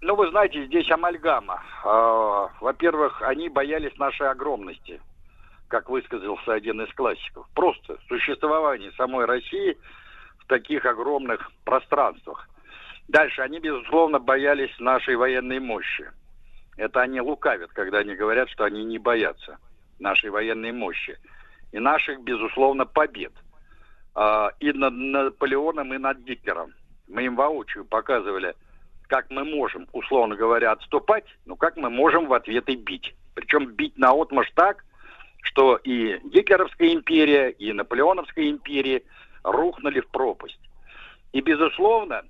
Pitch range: 130-210 Hz